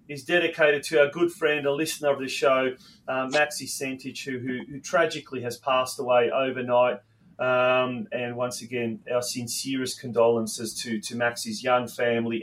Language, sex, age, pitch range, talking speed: English, male, 30-49, 120-150 Hz, 165 wpm